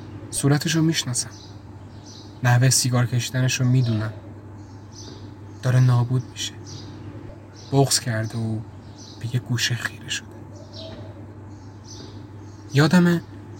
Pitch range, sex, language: 105-130 Hz, male, Persian